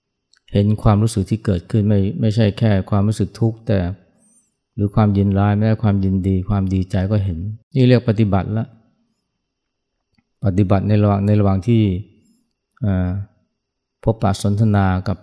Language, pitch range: Thai, 100-115 Hz